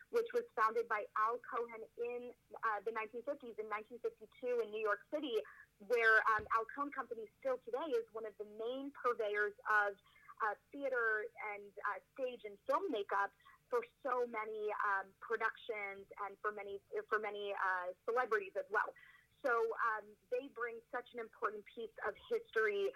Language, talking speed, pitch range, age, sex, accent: English, 160 wpm, 210-250 Hz, 30-49, female, American